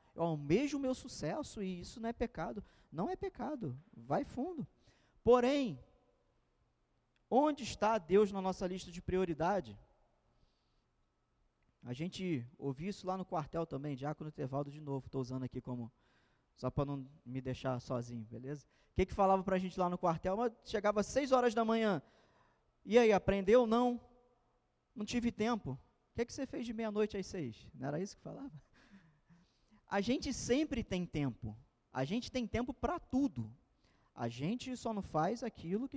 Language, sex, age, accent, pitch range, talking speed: Portuguese, male, 20-39, Brazilian, 155-230 Hz, 170 wpm